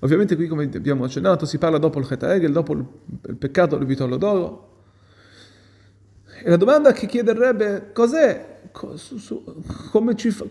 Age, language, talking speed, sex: 30-49, Italian, 160 wpm, male